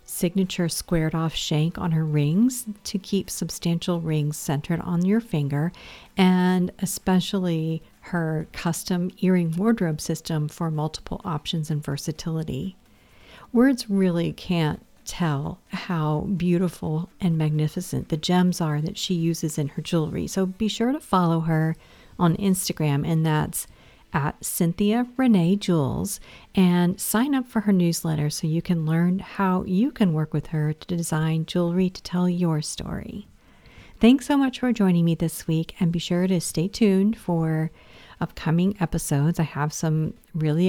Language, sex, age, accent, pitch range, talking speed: English, female, 50-69, American, 160-195 Hz, 150 wpm